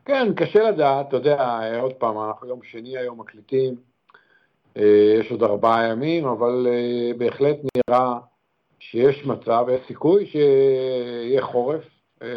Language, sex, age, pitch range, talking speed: Hebrew, male, 60-79, 115-135 Hz, 120 wpm